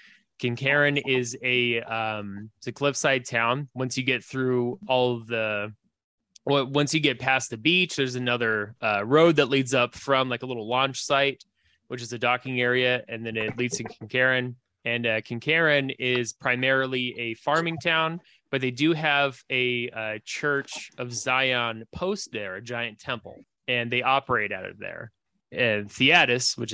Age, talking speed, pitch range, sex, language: 20-39, 170 wpm, 120-140 Hz, male, English